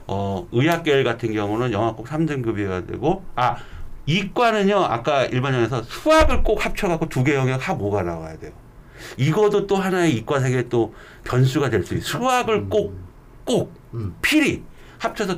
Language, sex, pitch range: Korean, male, 120-185 Hz